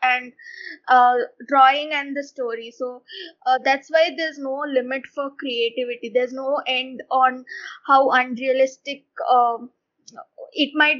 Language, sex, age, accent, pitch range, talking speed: Kannada, female, 20-39, native, 255-300 Hz, 130 wpm